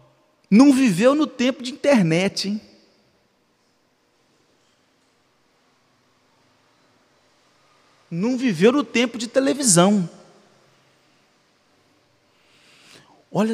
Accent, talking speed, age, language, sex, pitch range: Brazilian, 60 wpm, 40-59, Portuguese, male, 160-205 Hz